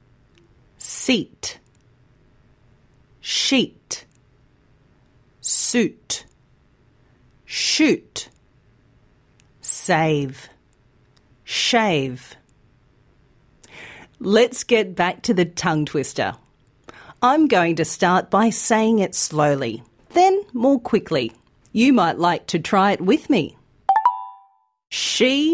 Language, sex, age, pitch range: Thai, female, 40-59, 145-235 Hz